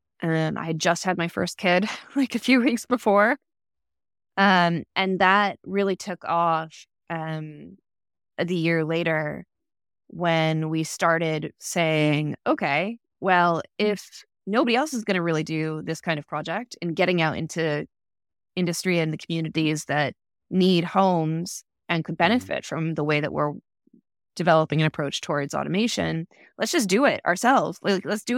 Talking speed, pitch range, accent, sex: 155 wpm, 155-190 Hz, American, female